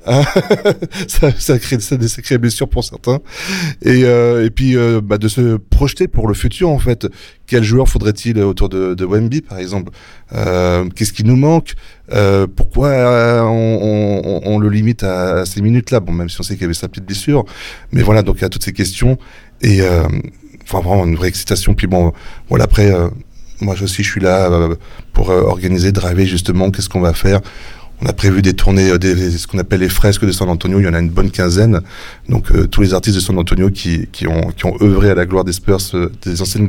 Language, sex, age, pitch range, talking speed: French, male, 30-49, 90-120 Hz, 230 wpm